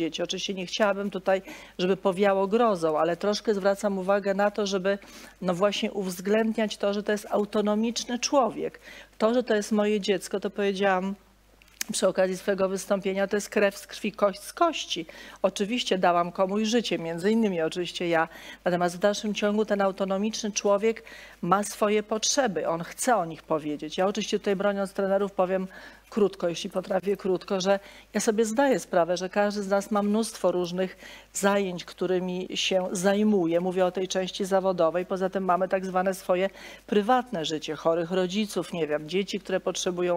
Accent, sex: native, female